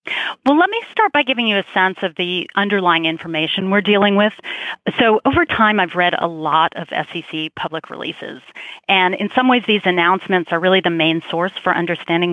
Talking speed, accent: 195 wpm, American